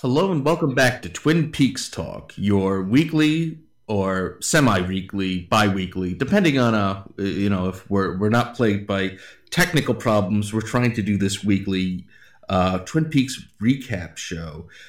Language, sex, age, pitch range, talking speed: English, male, 30-49, 95-115 Hz, 150 wpm